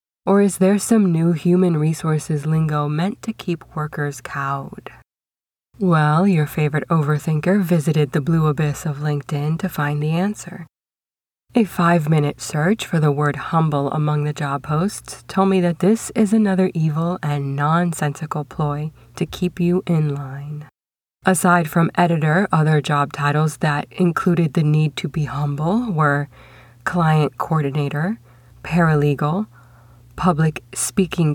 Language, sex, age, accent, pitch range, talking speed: English, female, 20-39, American, 145-175 Hz, 140 wpm